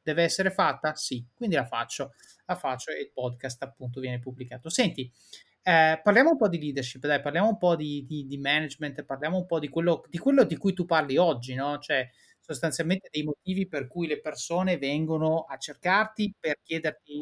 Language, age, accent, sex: Italian, 30-49, native, male